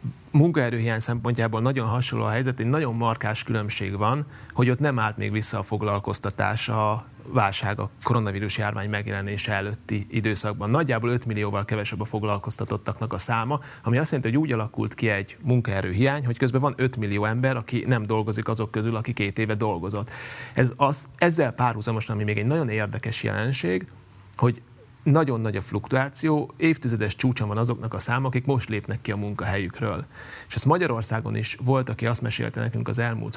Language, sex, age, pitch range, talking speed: Hungarian, male, 30-49, 110-130 Hz, 175 wpm